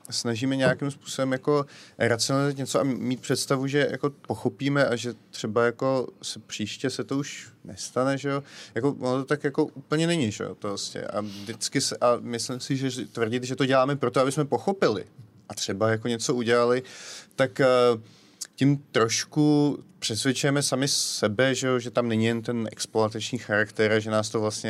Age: 30-49